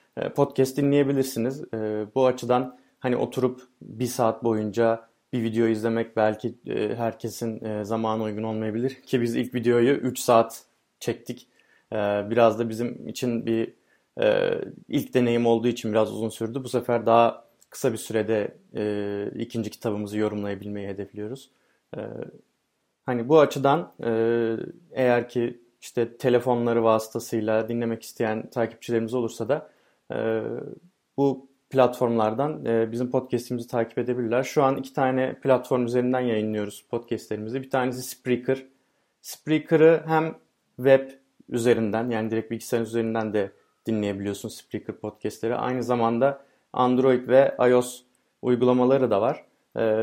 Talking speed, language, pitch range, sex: 120 wpm, Turkish, 115-130 Hz, male